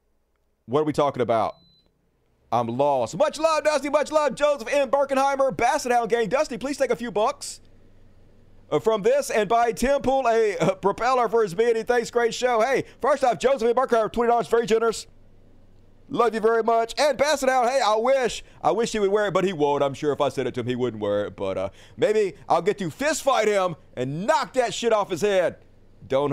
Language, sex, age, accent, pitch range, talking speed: English, male, 40-59, American, 180-270 Hz, 210 wpm